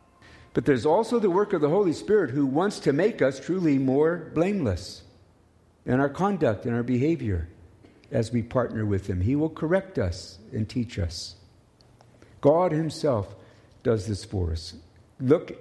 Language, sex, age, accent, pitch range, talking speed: English, male, 50-69, American, 100-145 Hz, 160 wpm